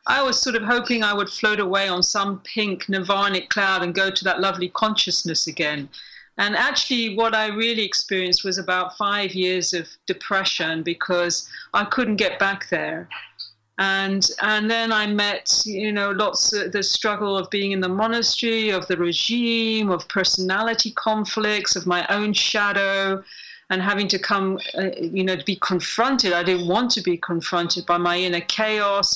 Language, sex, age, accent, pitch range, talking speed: English, female, 40-59, British, 185-220 Hz, 175 wpm